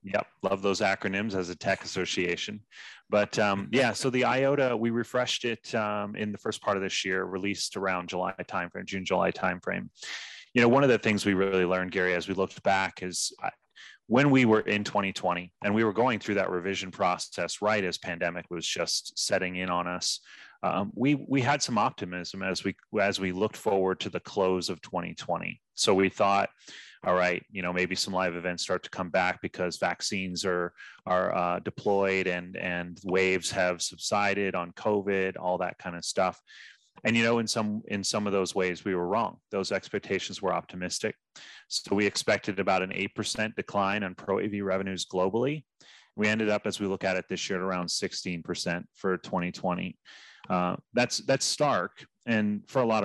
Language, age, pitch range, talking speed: English, 30-49, 90-105 Hz, 190 wpm